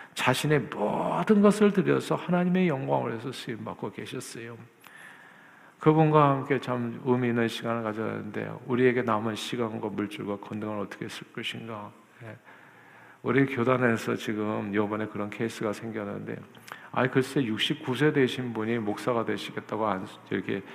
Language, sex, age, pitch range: Korean, male, 50-69, 115-180 Hz